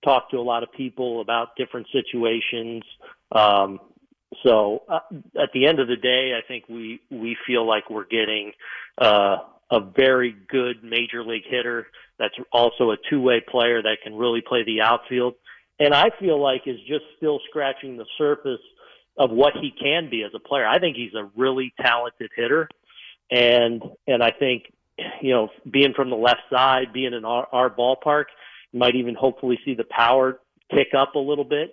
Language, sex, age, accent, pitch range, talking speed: English, male, 40-59, American, 115-135 Hz, 185 wpm